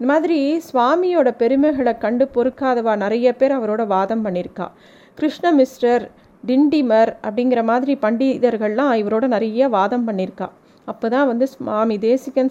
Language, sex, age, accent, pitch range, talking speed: Tamil, female, 30-49, native, 215-265 Hz, 115 wpm